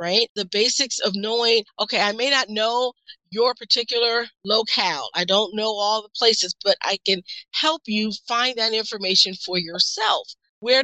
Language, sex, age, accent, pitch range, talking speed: English, female, 40-59, American, 190-235 Hz, 165 wpm